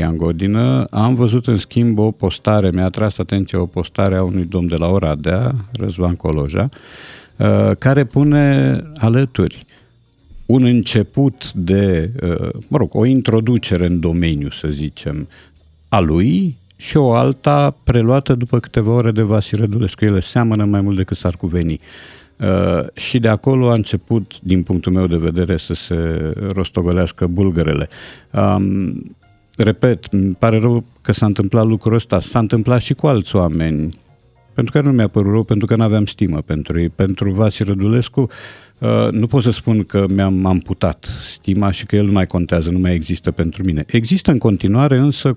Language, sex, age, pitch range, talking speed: Romanian, male, 50-69, 90-120 Hz, 165 wpm